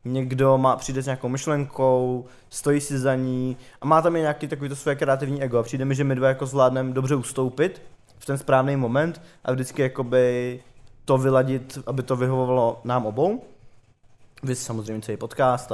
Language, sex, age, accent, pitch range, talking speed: Czech, male, 20-39, native, 120-135 Hz, 170 wpm